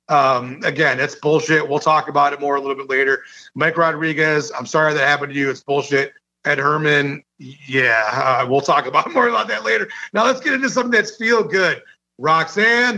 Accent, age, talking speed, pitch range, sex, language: American, 30-49, 200 wpm, 150-180 Hz, male, English